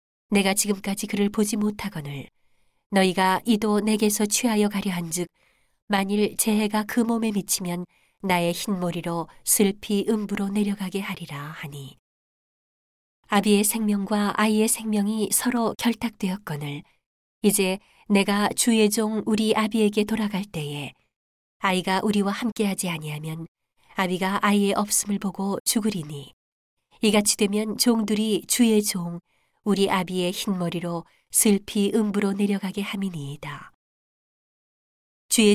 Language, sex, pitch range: Korean, female, 180-215 Hz